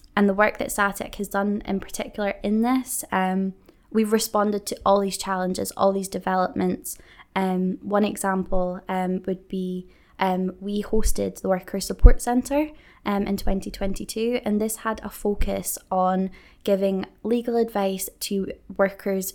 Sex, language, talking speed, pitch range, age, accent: female, English, 145 wpm, 190-210 Hz, 20-39, British